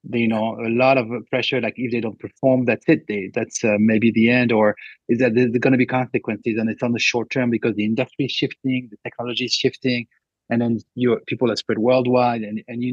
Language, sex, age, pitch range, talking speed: English, male, 40-59, 115-135 Hz, 245 wpm